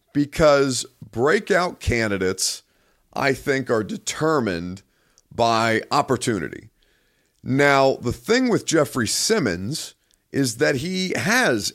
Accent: American